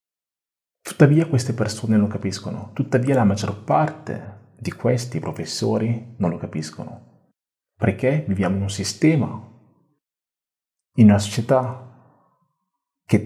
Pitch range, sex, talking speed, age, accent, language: 100-130 Hz, male, 110 wpm, 40-59, native, Italian